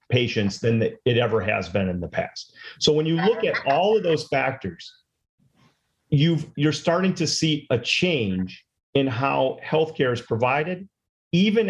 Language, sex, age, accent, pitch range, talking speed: English, male, 40-59, American, 115-150 Hz, 155 wpm